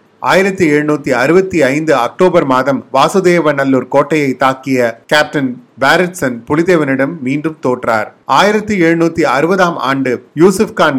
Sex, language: male, Tamil